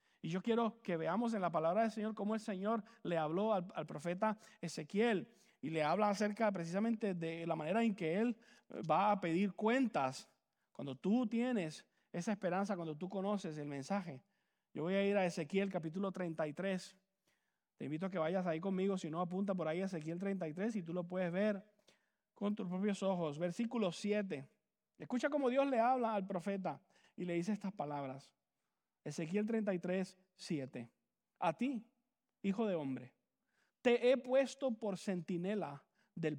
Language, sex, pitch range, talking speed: English, male, 170-220 Hz, 170 wpm